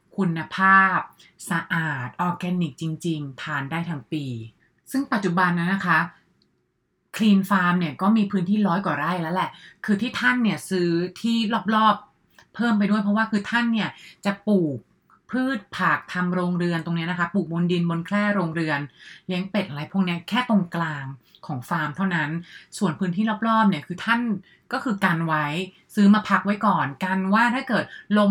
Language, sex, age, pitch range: English, female, 30-49, 170-220 Hz